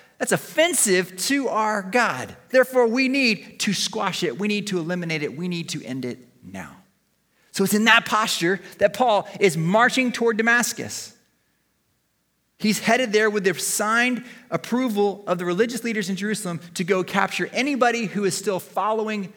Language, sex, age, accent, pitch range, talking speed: English, male, 30-49, American, 165-215 Hz, 165 wpm